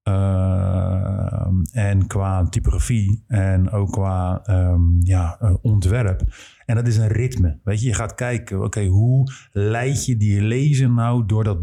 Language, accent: Dutch, Dutch